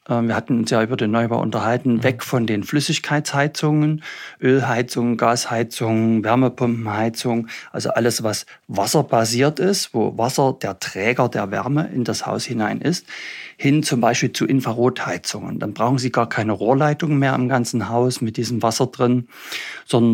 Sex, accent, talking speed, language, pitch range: male, German, 150 wpm, German, 115-140 Hz